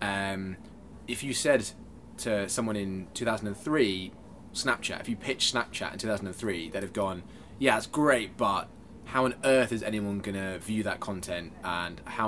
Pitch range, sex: 95-115 Hz, male